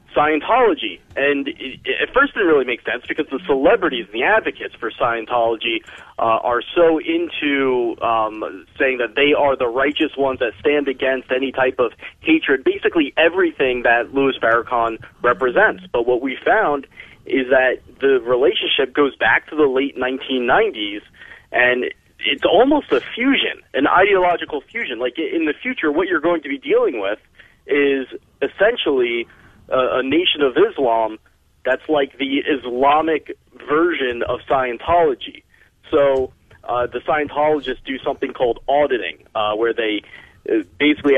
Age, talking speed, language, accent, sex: 30-49, 145 wpm, English, American, male